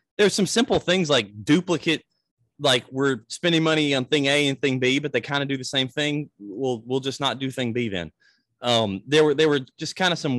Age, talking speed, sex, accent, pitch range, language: 30-49, 235 wpm, male, American, 110-150 Hz, English